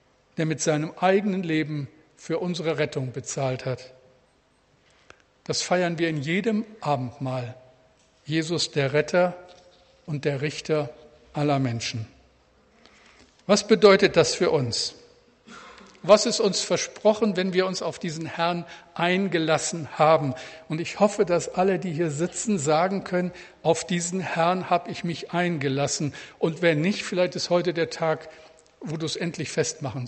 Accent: German